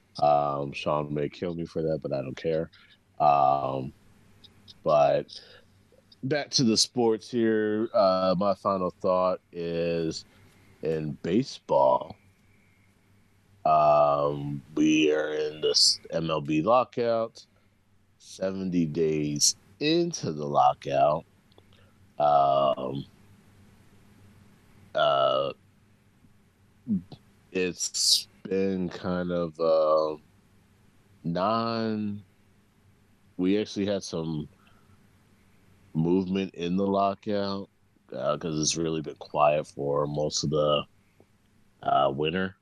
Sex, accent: male, American